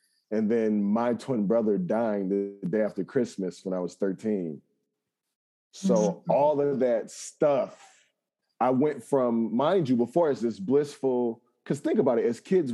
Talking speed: 160 wpm